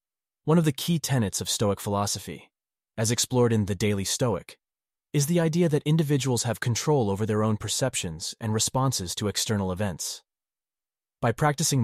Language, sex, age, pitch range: English, male, 30-49, 100-120 Hz